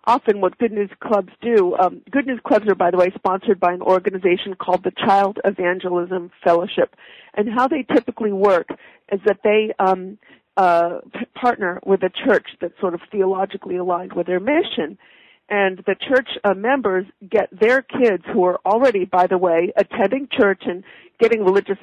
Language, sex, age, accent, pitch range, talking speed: English, female, 50-69, American, 185-235 Hz, 180 wpm